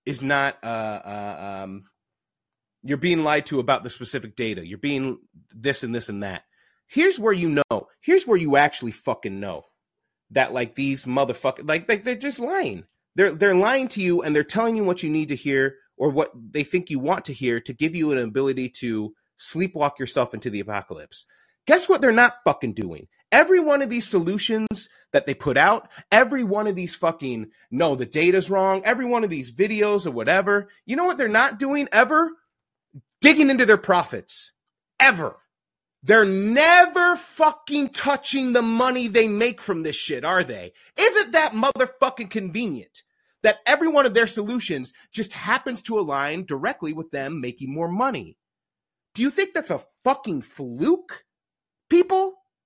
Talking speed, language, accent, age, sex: 175 wpm, English, American, 30-49, male